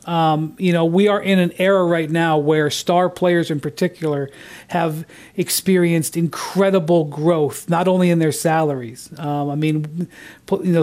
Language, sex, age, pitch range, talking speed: English, male, 40-59, 150-180 Hz, 160 wpm